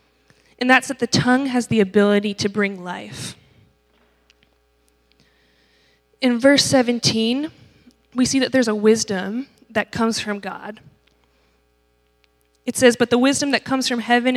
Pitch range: 195-240 Hz